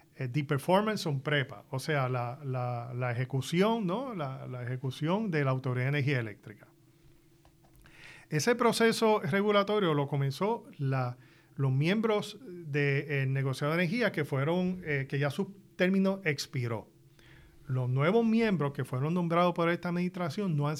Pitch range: 140-180 Hz